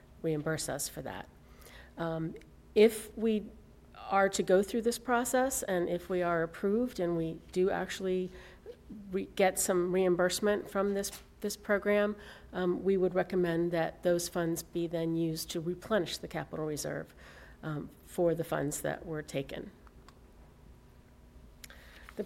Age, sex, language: 50-69, female, English